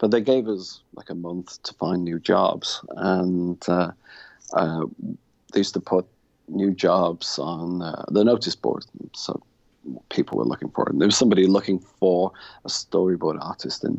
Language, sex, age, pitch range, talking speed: English, male, 40-59, 90-105 Hz, 175 wpm